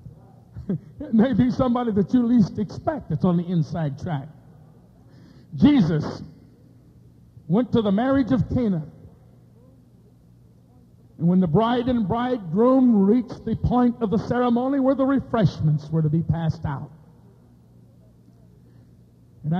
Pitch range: 155-235 Hz